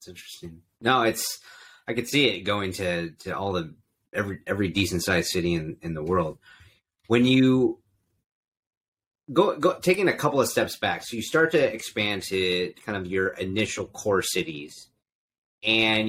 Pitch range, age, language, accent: 95-120 Hz, 30-49, English, American